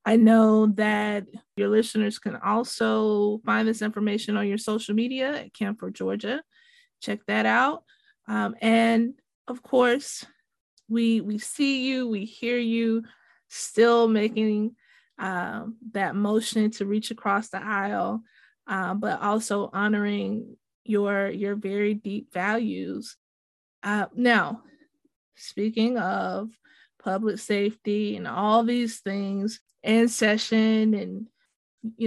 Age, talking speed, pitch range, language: 20-39, 120 wpm, 210-240 Hz, English